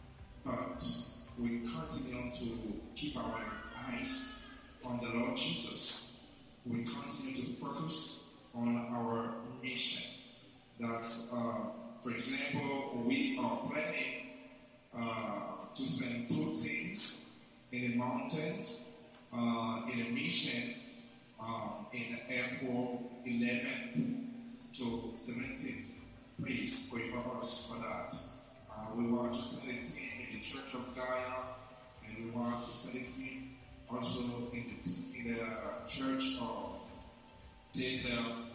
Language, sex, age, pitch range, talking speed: English, male, 30-49, 115-125 Hz, 110 wpm